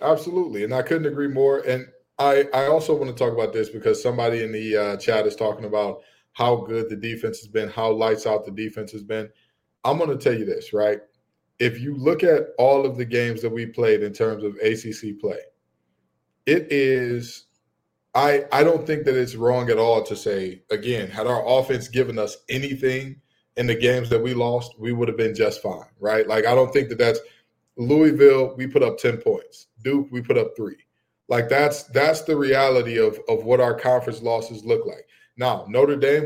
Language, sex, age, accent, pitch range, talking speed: English, male, 20-39, American, 115-155 Hz, 210 wpm